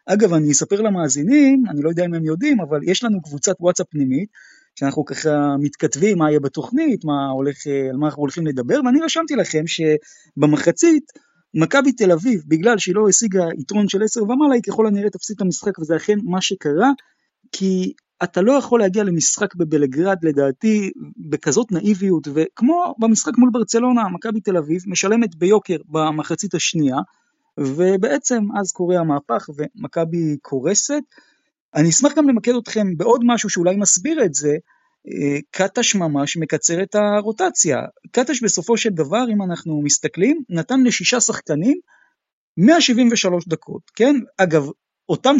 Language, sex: Hebrew, male